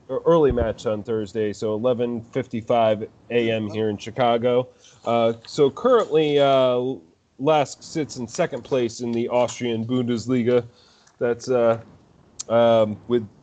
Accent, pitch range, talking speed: American, 115-140 Hz, 120 wpm